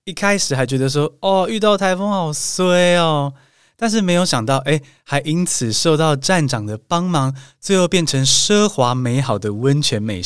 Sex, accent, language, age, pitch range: male, native, Chinese, 20-39, 115-160 Hz